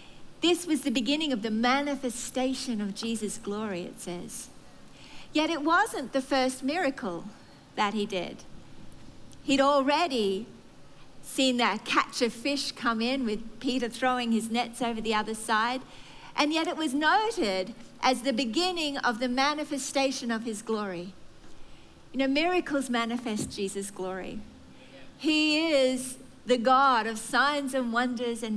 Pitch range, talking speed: 235-310 Hz, 145 wpm